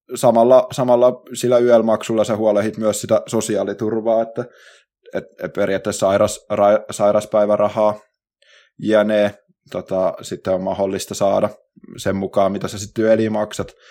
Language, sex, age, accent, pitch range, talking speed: Finnish, male, 20-39, native, 105-125 Hz, 130 wpm